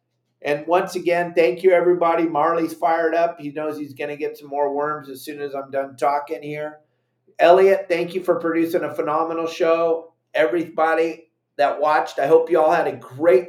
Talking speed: 190 wpm